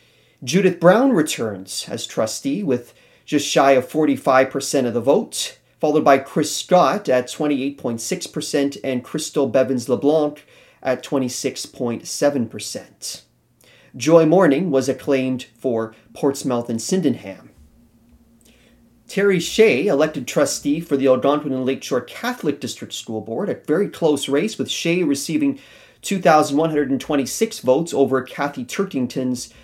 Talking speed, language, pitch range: 115 wpm, English, 130-155 Hz